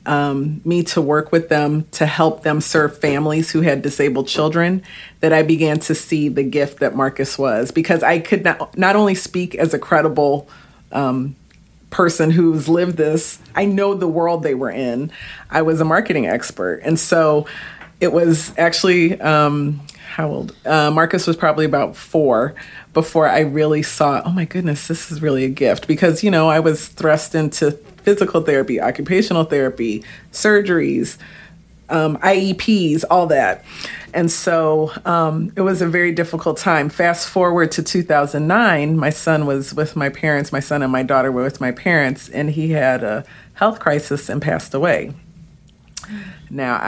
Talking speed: 170 wpm